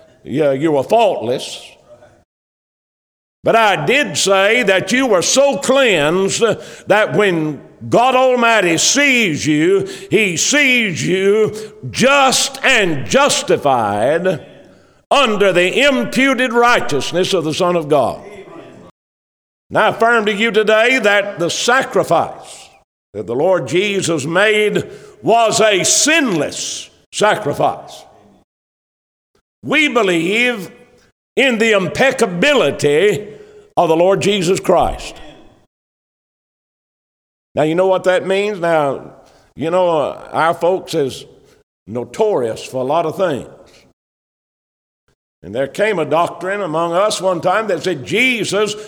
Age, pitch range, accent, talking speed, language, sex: 60-79, 170-245 Hz, American, 115 wpm, English, male